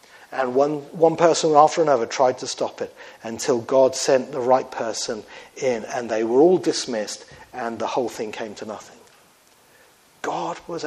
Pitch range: 125-170 Hz